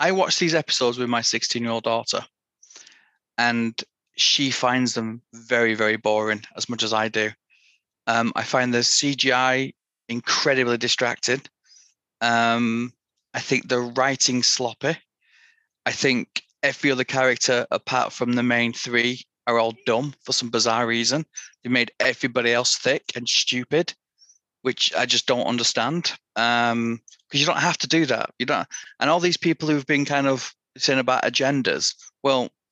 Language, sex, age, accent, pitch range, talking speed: English, male, 30-49, British, 120-145 Hz, 160 wpm